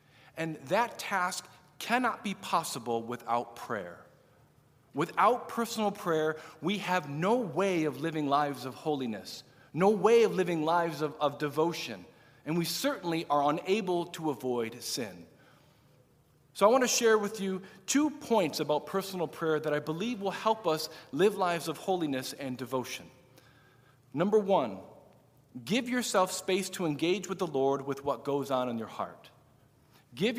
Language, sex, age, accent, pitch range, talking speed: English, male, 50-69, American, 145-205 Hz, 155 wpm